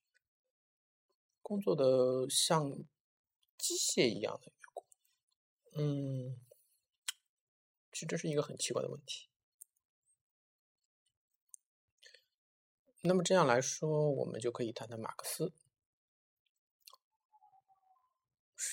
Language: Chinese